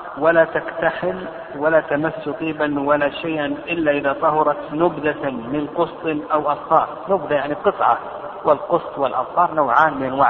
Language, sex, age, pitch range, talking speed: Arabic, male, 50-69, 135-160 Hz, 135 wpm